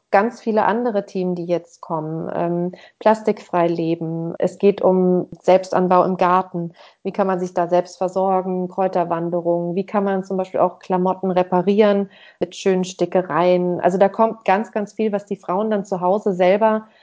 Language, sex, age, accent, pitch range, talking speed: German, female, 30-49, German, 180-225 Hz, 165 wpm